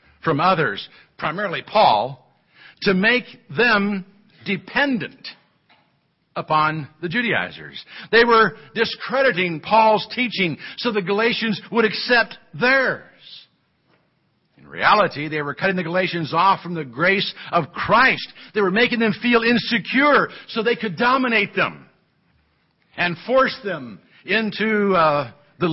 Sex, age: male, 60-79